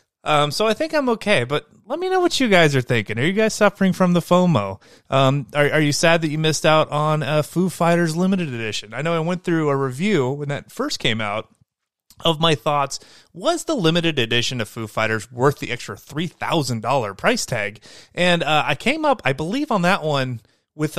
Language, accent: English, American